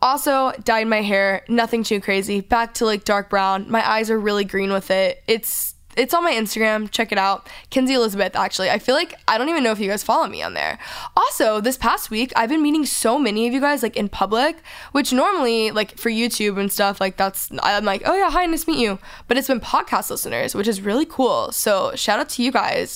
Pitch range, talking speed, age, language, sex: 205-265 Hz, 240 wpm, 10-29, English, female